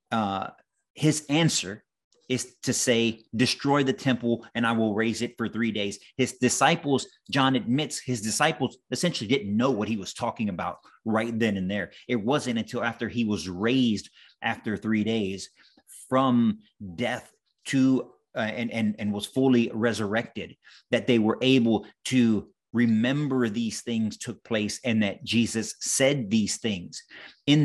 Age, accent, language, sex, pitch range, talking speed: 30-49, American, English, male, 110-130 Hz, 155 wpm